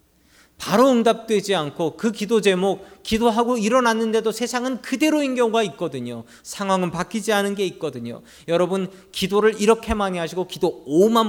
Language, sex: Korean, male